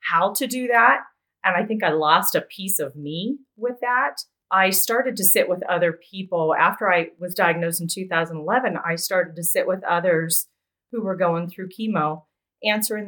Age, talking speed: 30-49, 185 wpm